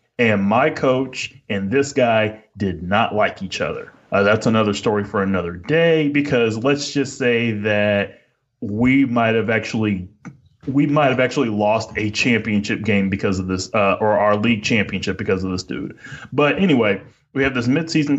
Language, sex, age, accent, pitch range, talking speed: English, male, 30-49, American, 100-135 Hz, 175 wpm